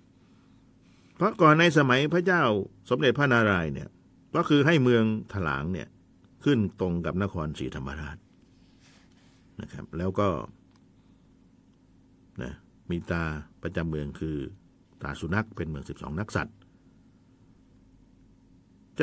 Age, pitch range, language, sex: 60-79, 90-135 Hz, Thai, male